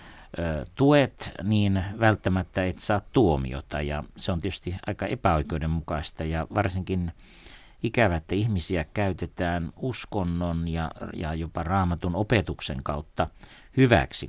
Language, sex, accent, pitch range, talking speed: Finnish, male, native, 80-105 Hz, 110 wpm